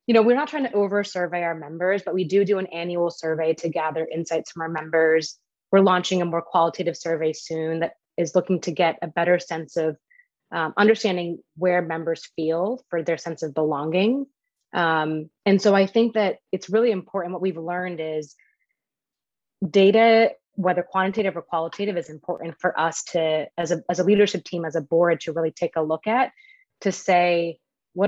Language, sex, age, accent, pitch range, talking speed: English, female, 20-39, American, 165-195 Hz, 190 wpm